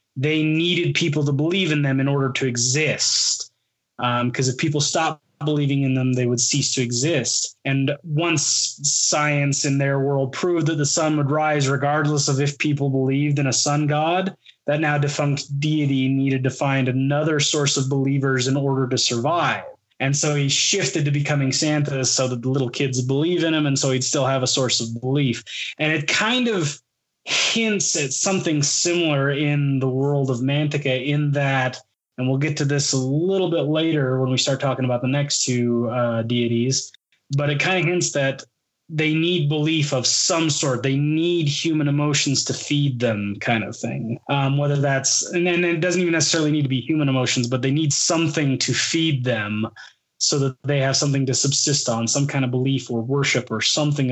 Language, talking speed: English, 195 wpm